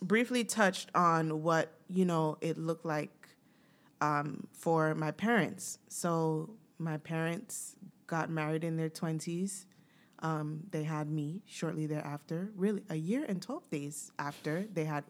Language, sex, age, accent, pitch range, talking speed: English, female, 20-39, American, 150-180 Hz, 145 wpm